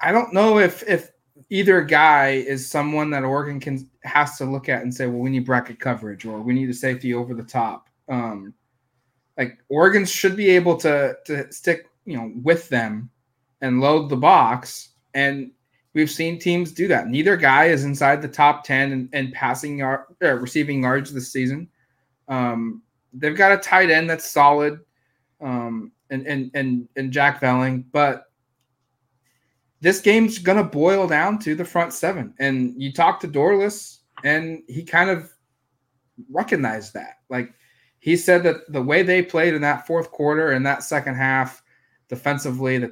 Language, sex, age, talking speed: English, male, 20-39, 170 wpm